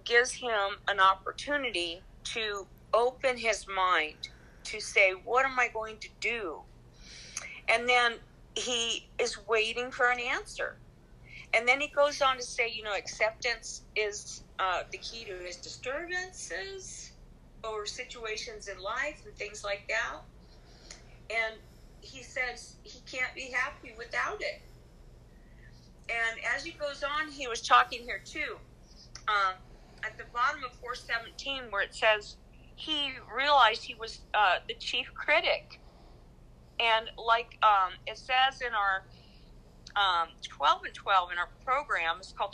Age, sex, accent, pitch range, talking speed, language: 50-69, female, American, 195-255 Hz, 140 wpm, English